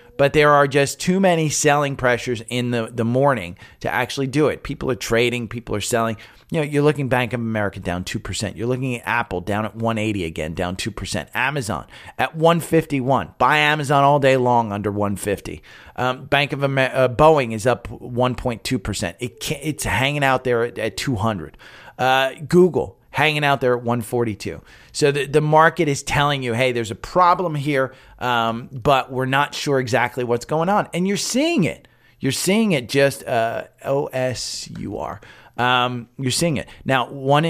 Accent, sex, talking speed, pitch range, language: American, male, 185 wpm, 115-145 Hz, English